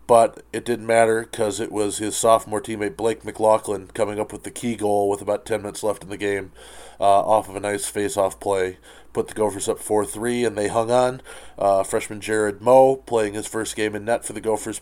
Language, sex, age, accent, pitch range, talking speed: English, male, 20-39, American, 100-110 Hz, 225 wpm